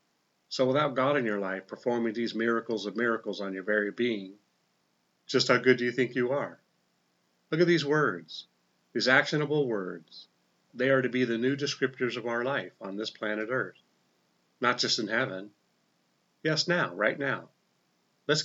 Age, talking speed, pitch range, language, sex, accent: 40-59, 170 wpm, 115-140 Hz, English, male, American